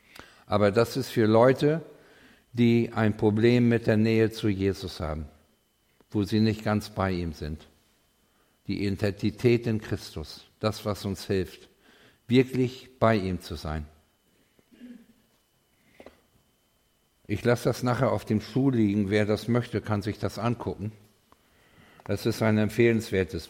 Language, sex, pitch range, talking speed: German, male, 100-120 Hz, 135 wpm